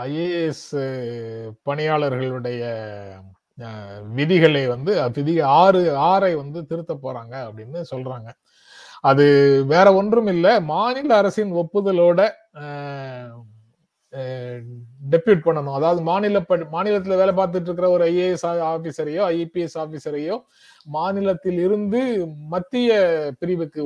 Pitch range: 155-210 Hz